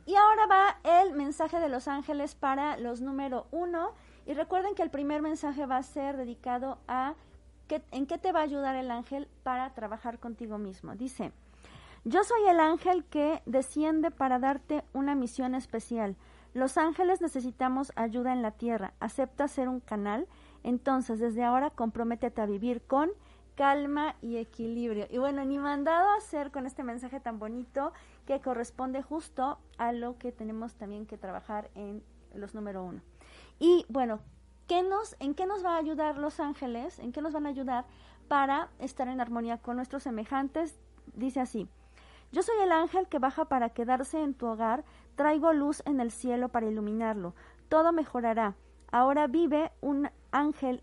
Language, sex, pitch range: Spanish, female, 235-300 Hz